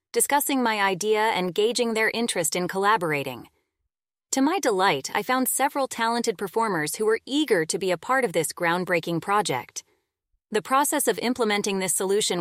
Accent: American